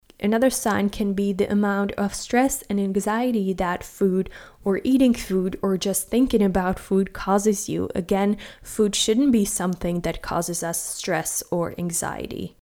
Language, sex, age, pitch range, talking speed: English, female, 20-39, 185-220 Hz, 155 wpm